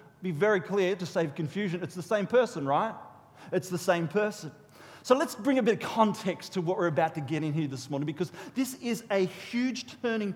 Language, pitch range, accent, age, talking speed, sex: English, 190-260 Hz, Australian, 40-59, 220 wpm, male